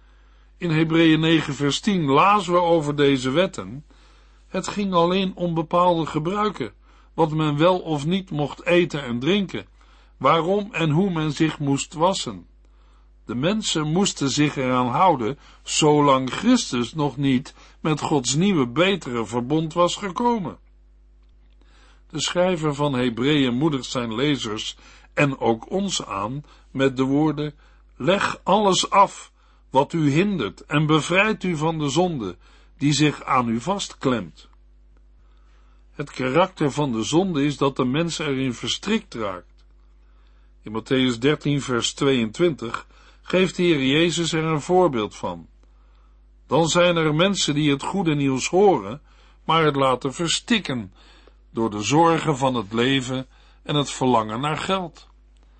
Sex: male